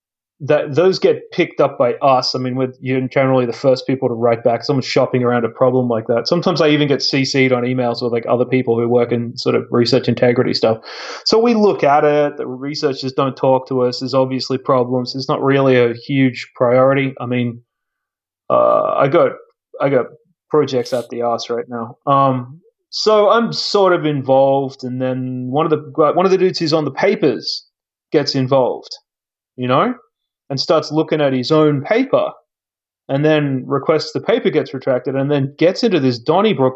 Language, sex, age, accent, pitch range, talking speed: English, male, 30-49, Australian, 130-155 Hz, 195 wpm